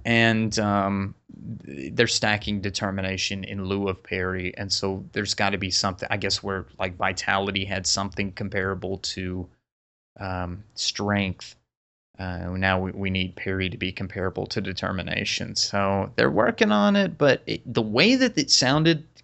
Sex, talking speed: male, 155 wpm